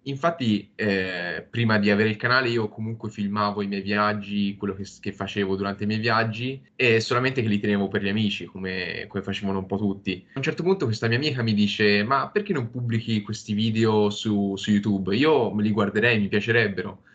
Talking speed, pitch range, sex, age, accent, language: 205 wpm, 100-120 Hz, male, 20-39, native, Italian